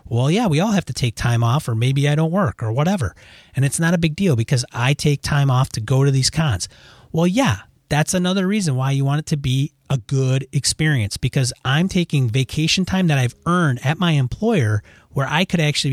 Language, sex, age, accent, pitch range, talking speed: English, male, 30-49, American, 120-150 Hz, 230 wpm